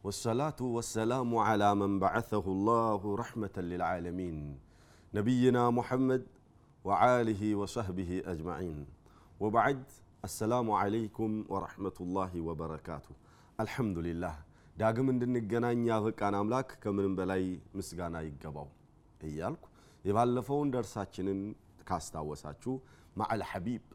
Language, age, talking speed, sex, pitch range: Amharic, 40-59, 90 wpm, male, 95-120 Hz